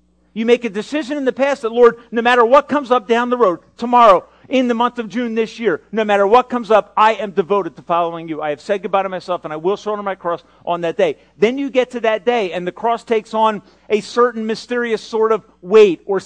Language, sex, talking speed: English, male, 255 wpm